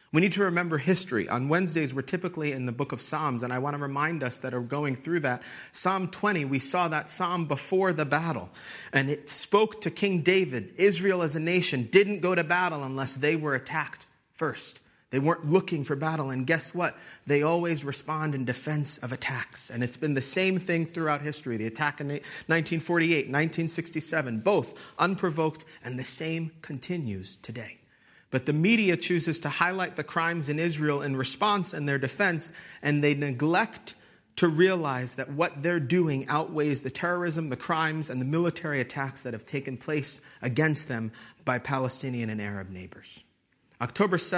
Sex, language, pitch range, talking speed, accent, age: male, English, 130-170 Hz, 180 wpm, American, 30-49